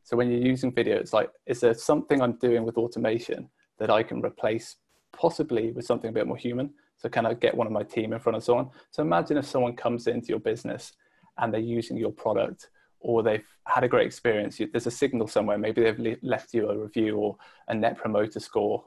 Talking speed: 225 wpm